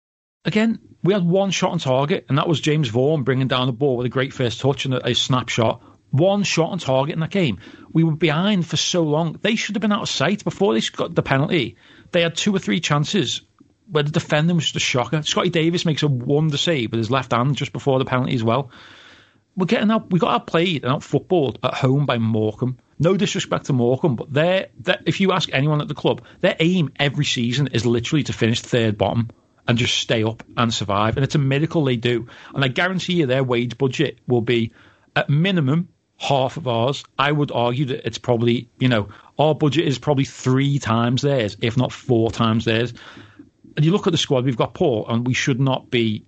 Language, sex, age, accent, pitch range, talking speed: English, male, 40-59, British, 120-165 Hz, 230 wpm